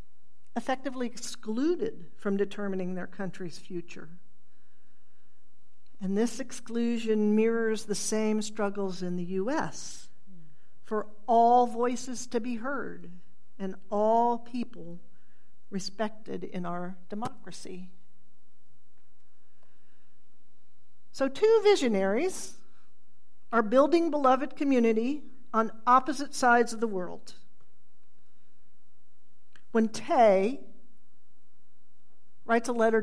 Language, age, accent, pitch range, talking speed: English, 50-69, American, 195-245 Hz, 85 wpm